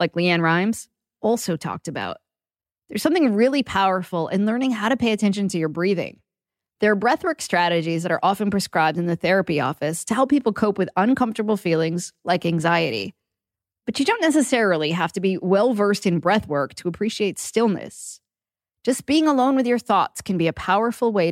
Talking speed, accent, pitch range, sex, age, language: 180 wpm, American, 170-225 Hz, female, 20-39, English